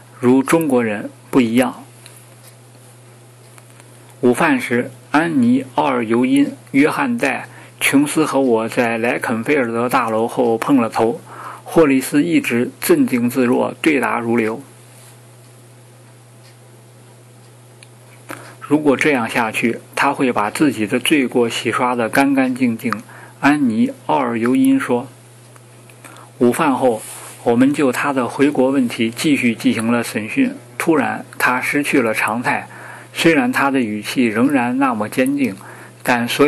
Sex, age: male, 50-69